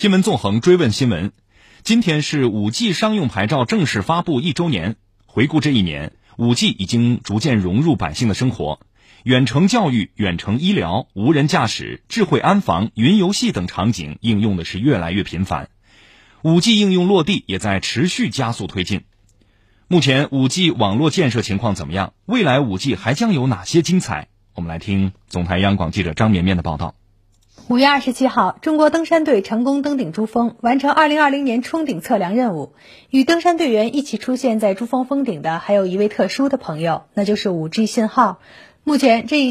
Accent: native